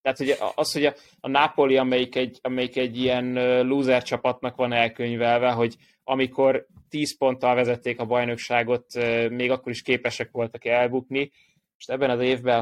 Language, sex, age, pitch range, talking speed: Hungarian, male, 20-39, 115-130 Hz, 150 wpm